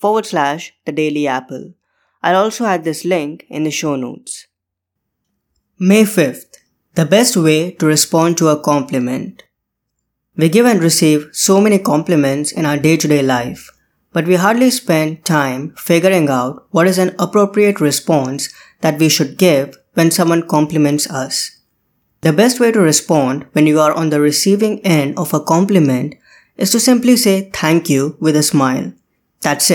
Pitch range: 150-190 Hz